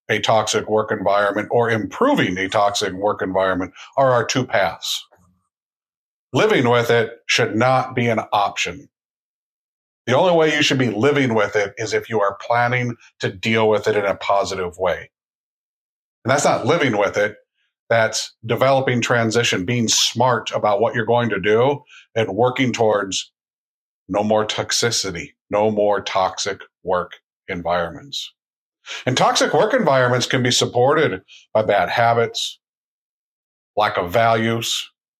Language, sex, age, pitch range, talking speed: English, male, 50-69, 110-130 Hz, 145 wpm